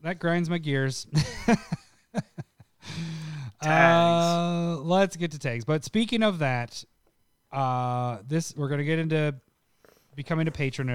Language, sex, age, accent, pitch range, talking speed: English, male, 20-39, American, 120-160 Hz, 130 wpm